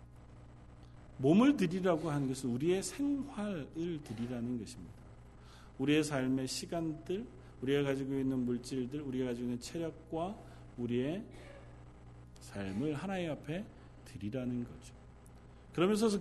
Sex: male